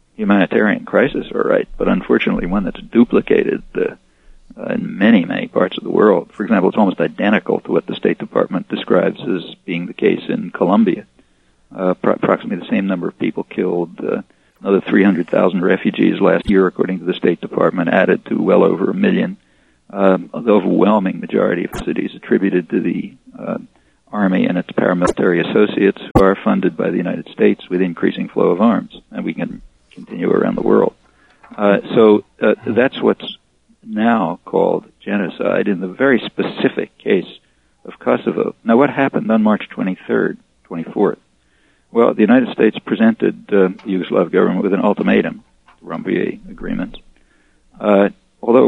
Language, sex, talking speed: English, male, 165 wpm